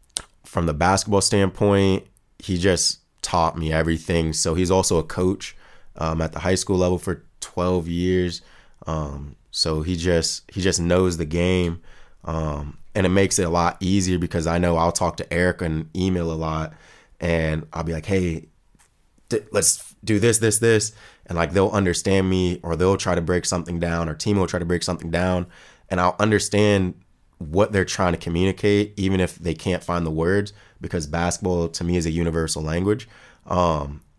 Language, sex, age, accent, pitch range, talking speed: German, male, 20-39, American, 80-95 Hz, 185 wpm